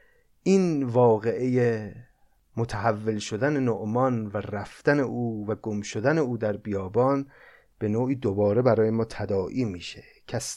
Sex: male